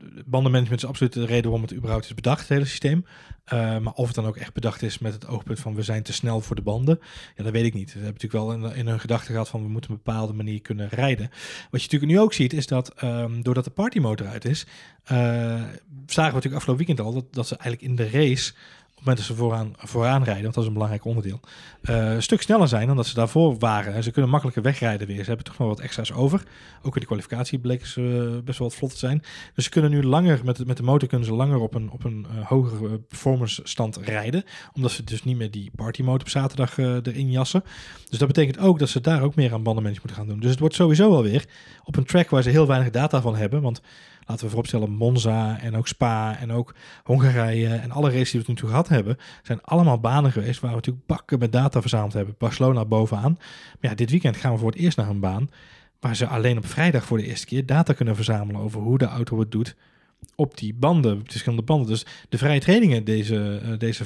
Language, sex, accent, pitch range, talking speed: Dutch, male, Dutch, 115-135 Hz, 250 wpm